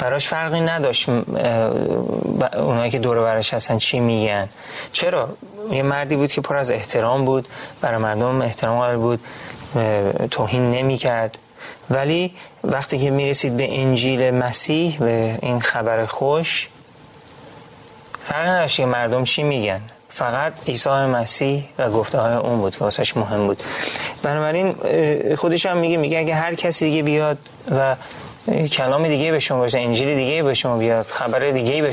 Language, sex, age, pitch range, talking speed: Persian, male, 30-49, 120-150 Hz, 145 wpm